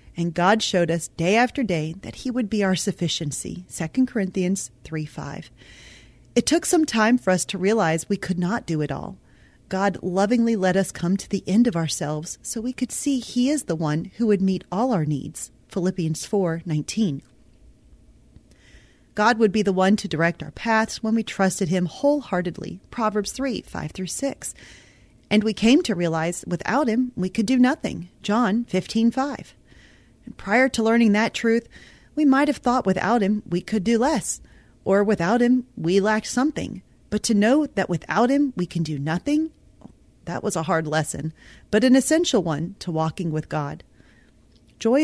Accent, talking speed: American, 180 wpm